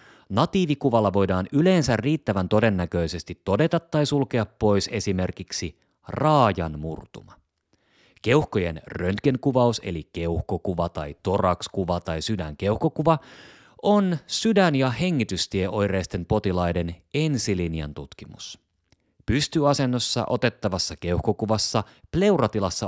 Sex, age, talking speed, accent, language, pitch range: male, 30-49, 80 wpm, native, Finnish, 90-125 Hz